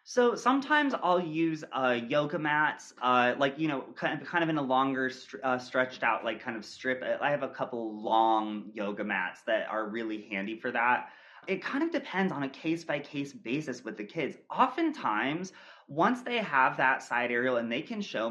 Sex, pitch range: male, 120-165 Hz